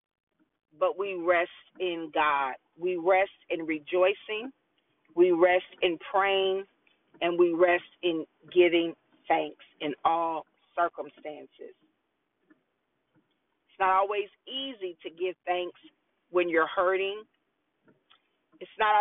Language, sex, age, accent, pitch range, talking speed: English, female, 40-59, American, 185-295 Hz, 105 wpm